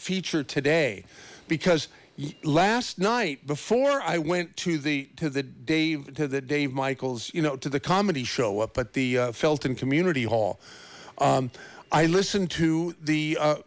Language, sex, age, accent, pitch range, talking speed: English, male, 50-69, American, 130-175 Hz, 160 wpm